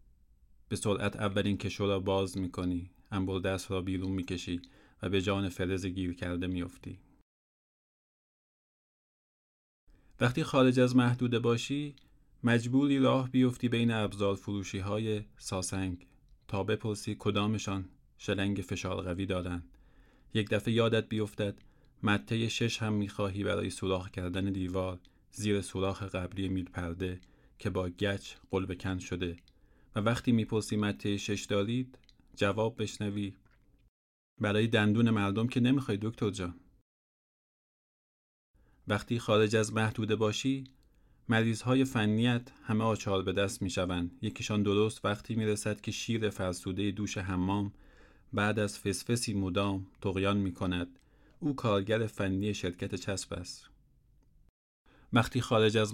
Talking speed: 130 wpm